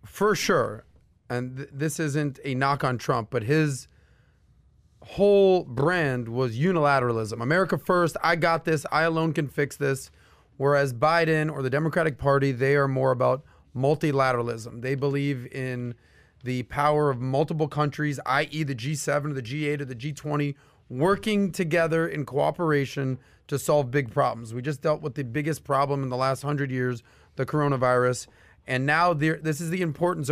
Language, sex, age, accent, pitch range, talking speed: English, male, 30-49, American, 130-165 Hz, 160 wpm